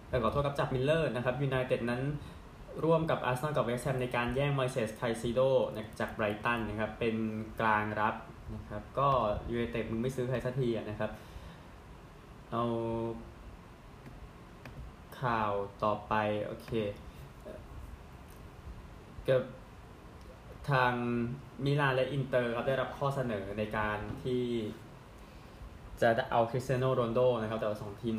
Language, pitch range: Thai, 110-130 Hz